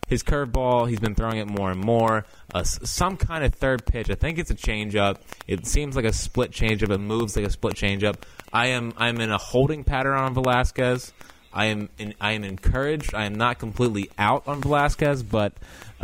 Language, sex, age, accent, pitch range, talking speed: English, male, 20-39, American, 105-140 Hz, 205 wpm